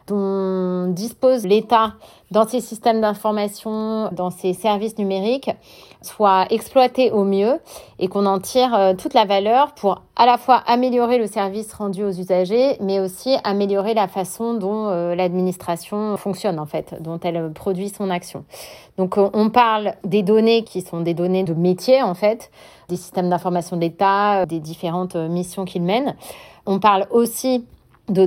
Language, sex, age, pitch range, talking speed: French, female, 30-49, 180-220 Hz, 155 wpm